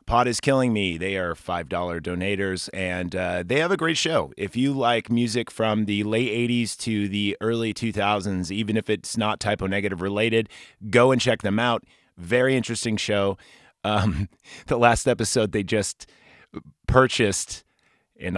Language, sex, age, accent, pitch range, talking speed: English, male, 30-49, American, 90-115 Hz, 160 wpm